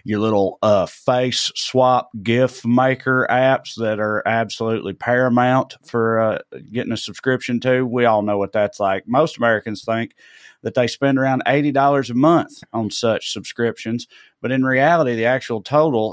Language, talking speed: English, 160 wpm